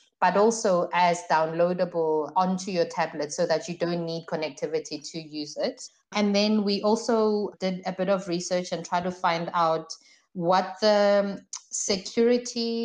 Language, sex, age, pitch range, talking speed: English, female, 20-39, 170-200 Hz, 155 wpm